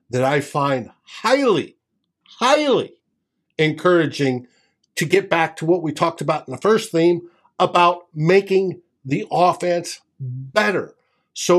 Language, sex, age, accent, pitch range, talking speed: English, male, 60-79, American, 135-180 Hz, 125 wpm